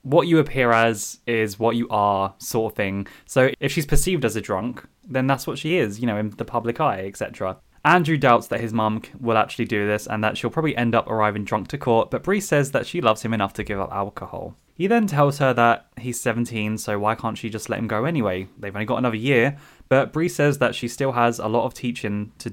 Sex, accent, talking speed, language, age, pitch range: male, British, 250 wpm, English, 10-29, 110-145 Hz